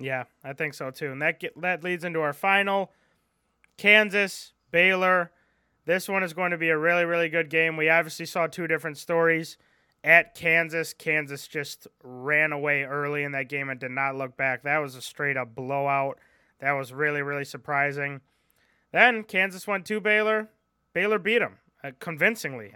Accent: American